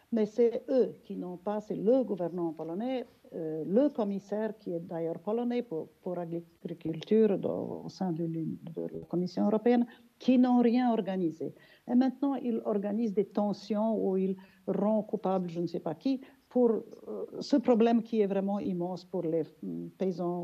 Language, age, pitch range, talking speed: French, 50-69, 185-235 Hz, 165 wpm